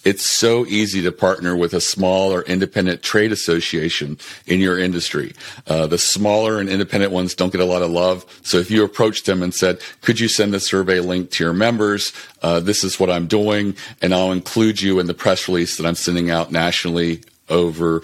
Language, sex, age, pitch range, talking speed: English, male, 40-59, 85-95 Hz, 210 wpm